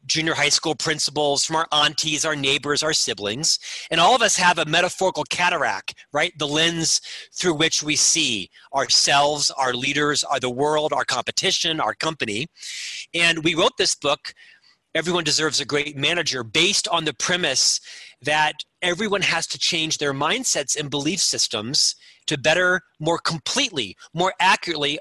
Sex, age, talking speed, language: male, 40-59, 160 wpm, English